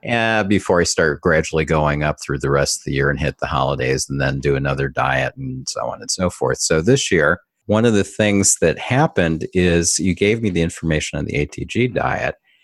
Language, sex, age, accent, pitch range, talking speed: English, male, 40-59, American, 80-100 Hz, 220 wpm